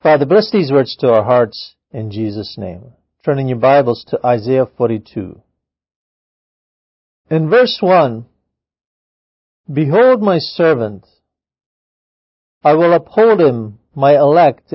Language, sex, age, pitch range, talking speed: English, male, 50-69, 110-150 Hz, 115 wpm